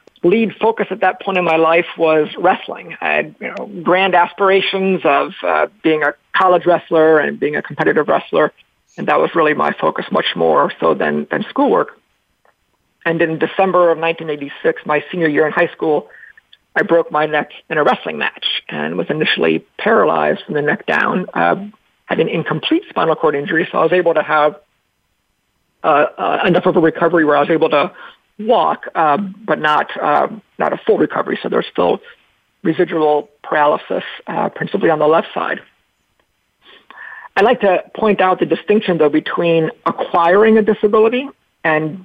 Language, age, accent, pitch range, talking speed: English, 50-69, American, 155-200 Hz, 175 wpm